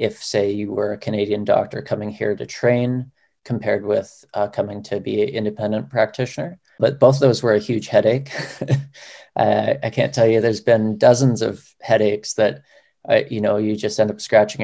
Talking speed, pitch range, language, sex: 195 wpm, 110-120 Hz, English, male